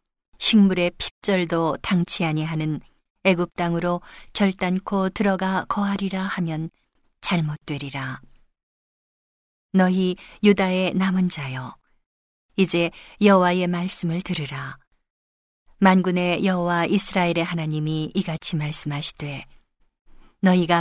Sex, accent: female, native